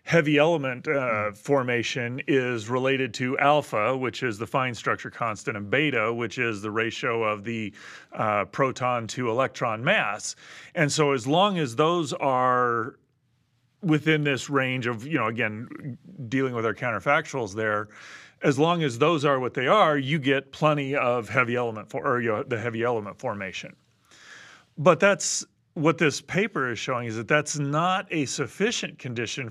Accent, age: American, 30-49